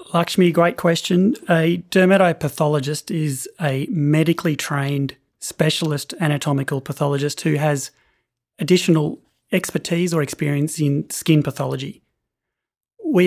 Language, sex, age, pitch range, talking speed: English, male, 30-49, 150-180 Hz, 100 wpm